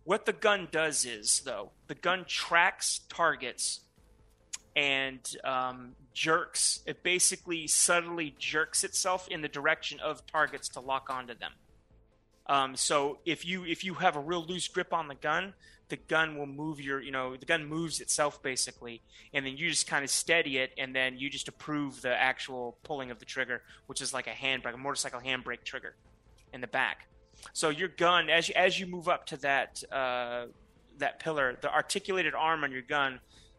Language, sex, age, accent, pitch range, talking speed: English, male, 30-49, American, 125-155 Hz, 185 wpm